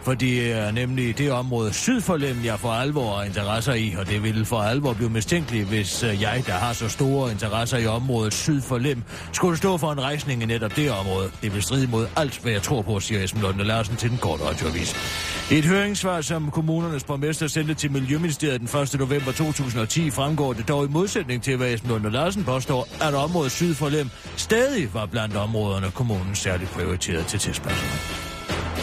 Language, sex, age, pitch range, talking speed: Danish, male, 40-59, 110-155 Hz, 190 wpm